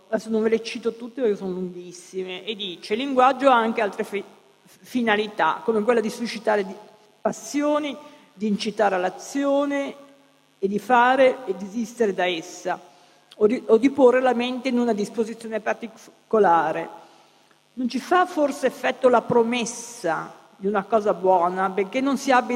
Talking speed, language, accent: 160 wpm, Italian, native